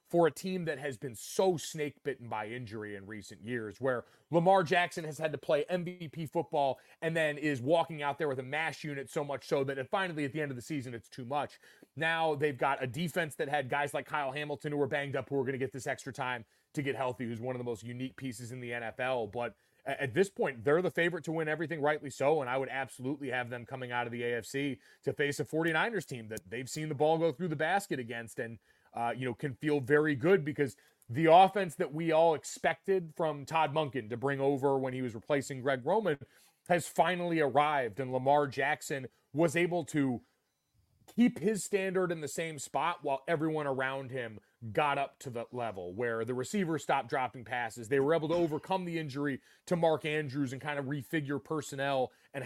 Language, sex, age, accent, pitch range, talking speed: English, male, 30-49, American, 130-155 Hz, 225 wpm